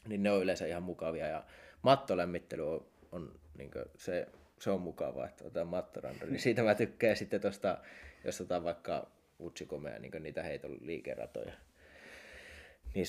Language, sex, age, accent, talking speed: Finnish, male, 20-39, native, 145 wpm